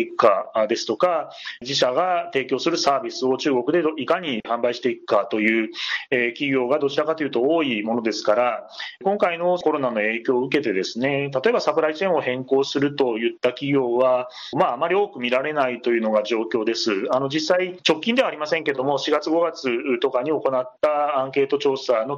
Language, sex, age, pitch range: Japanese, male, 30-49, 125-165 Hz